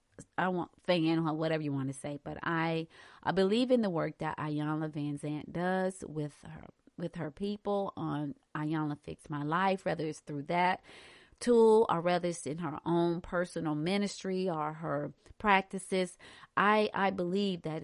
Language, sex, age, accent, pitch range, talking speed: English, female, 30-49, American, 155-210 Hz, 170 wpm